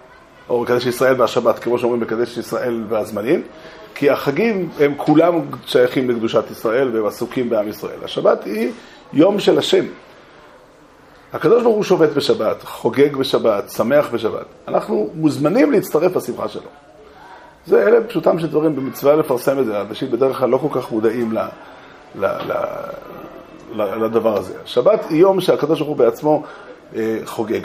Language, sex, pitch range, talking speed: Hebrew, male, 115-165 Hz, 140 wpm